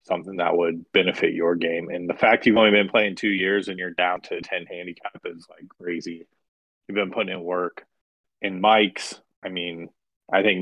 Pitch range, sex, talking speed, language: 90-105 Hz, male, 200 wpm, English